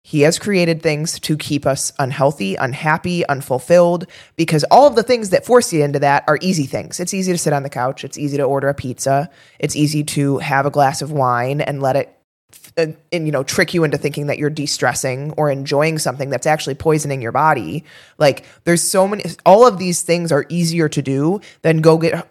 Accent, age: American, 20-39